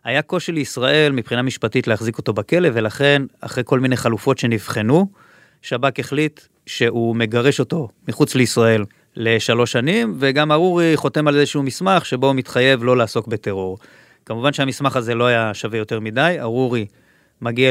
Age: 30-49